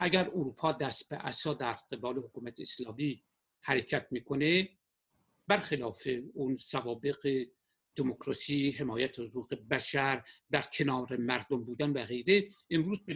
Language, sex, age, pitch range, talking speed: Persian, male, 60-79, 135-180 Hz, 120 wpm